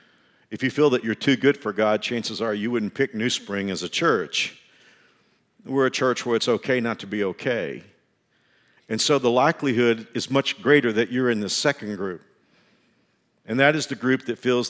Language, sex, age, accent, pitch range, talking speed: English, male, 50-69, American, 105-125 Hz, 200 wpm